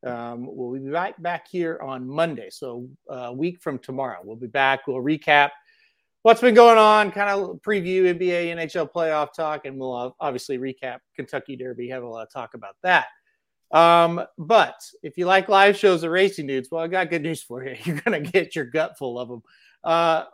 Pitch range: 140-190 Hz